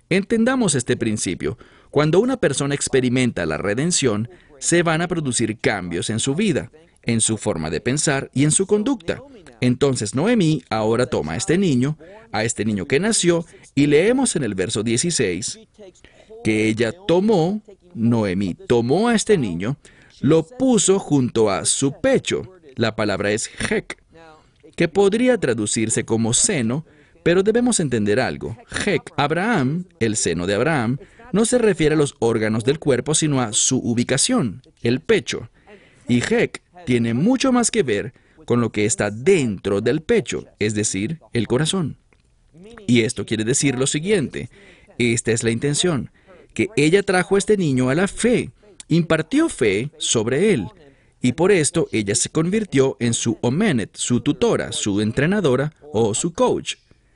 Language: English